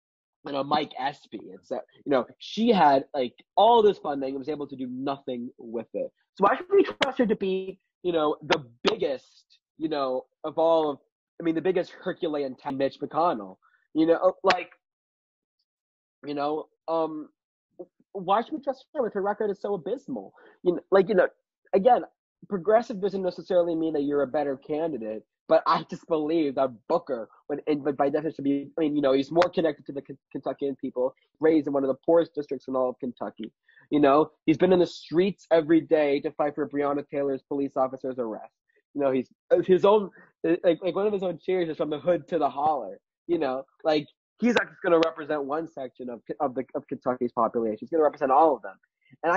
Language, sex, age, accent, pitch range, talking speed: English, male, 30-49, American, 140-185 Hz, 210 wpm